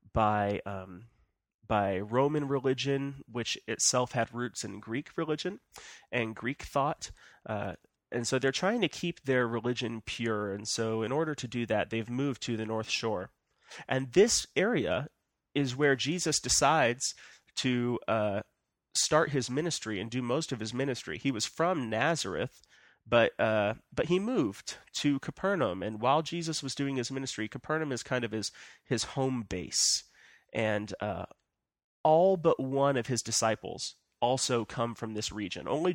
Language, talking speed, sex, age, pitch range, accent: English, 160 wpm, male, 30-49, 110-140 Hz, American